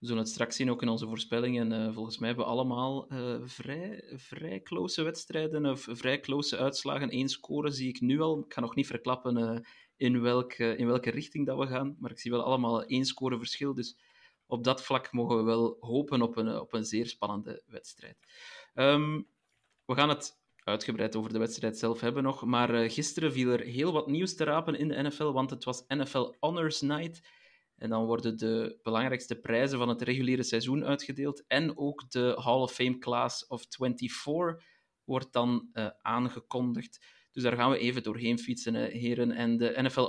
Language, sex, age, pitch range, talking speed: Dutch, male, 30-49, 120-140 Hz, 190 wpm